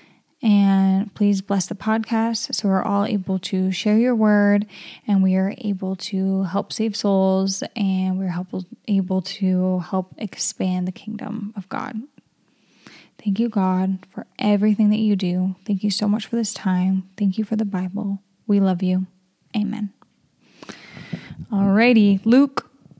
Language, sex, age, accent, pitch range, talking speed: English, female, 10-29, American, 195-225 Hz, 150 wpm